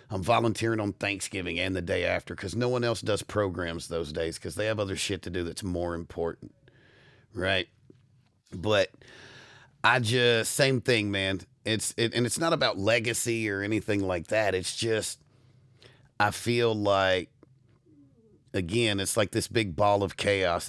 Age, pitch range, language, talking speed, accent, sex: 40-59, 95-125 Hz, English, 165 wpm, American, male